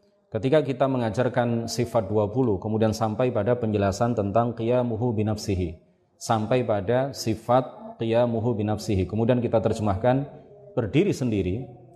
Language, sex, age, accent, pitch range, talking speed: Indonesian, male, 30-49, native, 105-130 Hz, 110 wpm